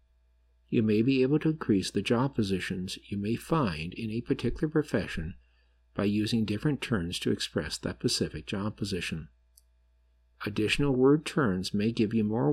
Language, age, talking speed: English, 50-69, 160 wpm